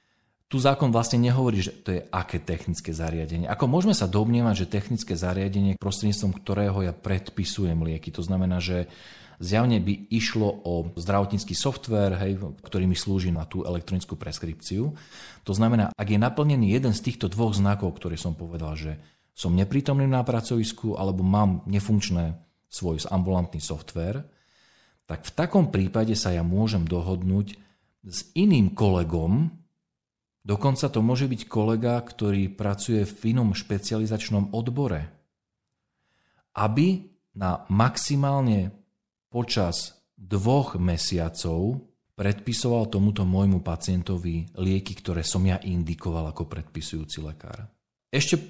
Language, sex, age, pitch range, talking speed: Slovak, male, 40-59, 90-115 Hz, 125 wpm